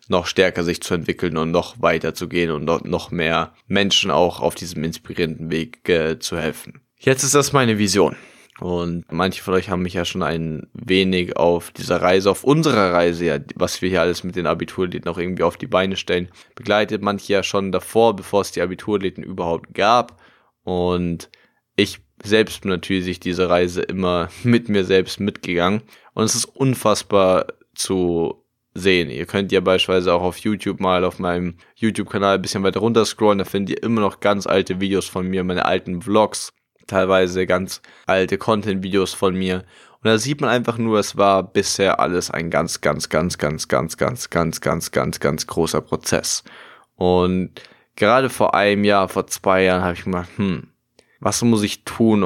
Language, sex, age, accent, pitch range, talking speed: German, male, 10-29, German, 90-100 Hz, 185 wpm